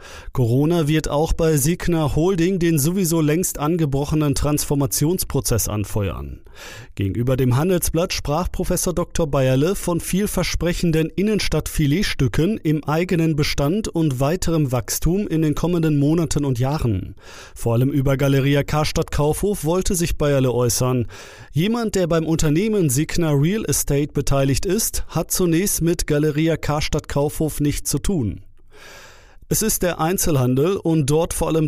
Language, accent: German, German